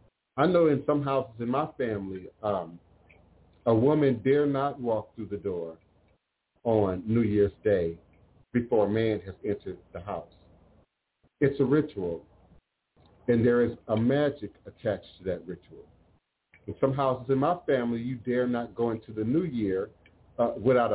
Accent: American